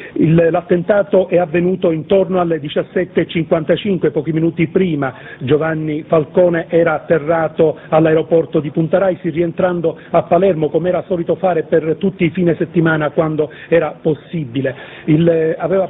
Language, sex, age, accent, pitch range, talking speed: Italian, male, 40-59, native, 160-185 Hz, 130 wpm